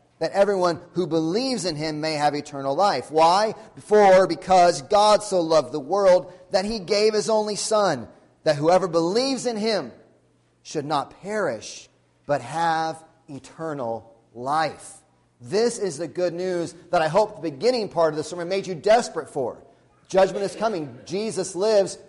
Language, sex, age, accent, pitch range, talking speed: English, male, 30-49, American, 155-200 Hz, 160 wpm